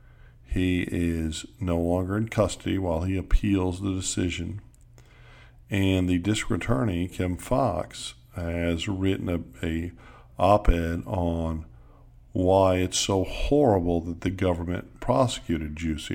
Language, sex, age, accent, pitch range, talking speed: English, male, 50-69, American, 80-95 Hz, 120 wpm